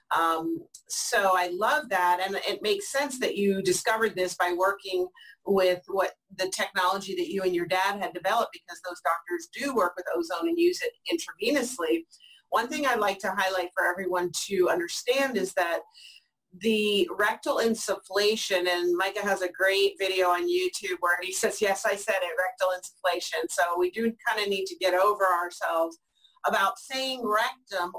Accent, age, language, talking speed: American, 40-59, English, 175 wpm